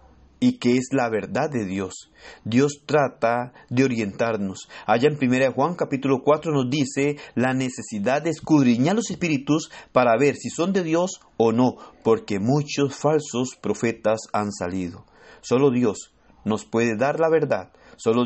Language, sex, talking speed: Spanish, male, 160 wpm